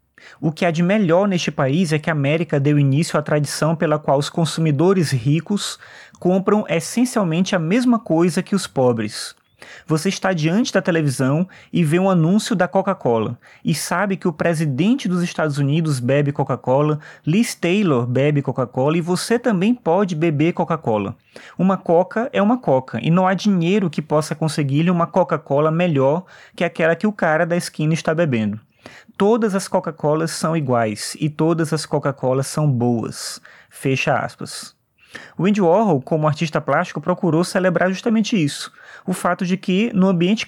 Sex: male